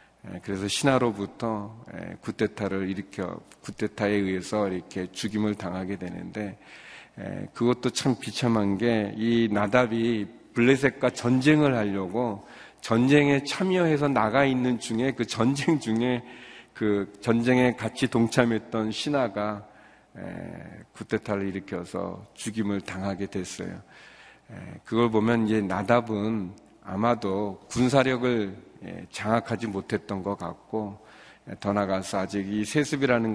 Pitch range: 100-125 Hz